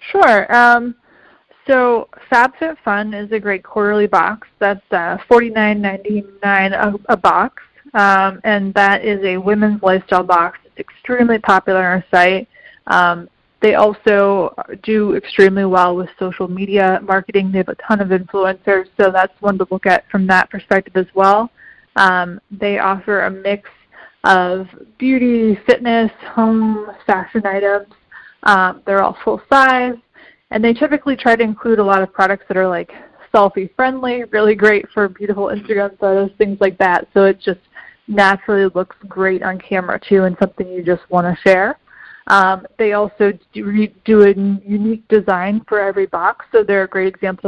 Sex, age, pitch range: female, 20-39, 190-220 Hz